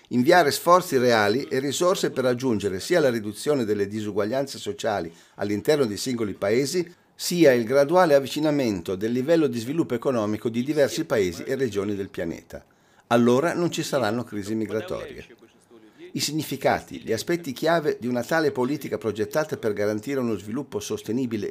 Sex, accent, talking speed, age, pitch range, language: male, native, 150 wpm, 50-69, 120-160 Hz, Italian